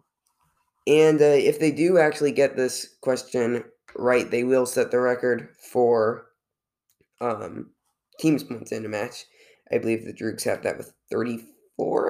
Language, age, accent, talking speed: English, 20-39, American, 150 wpm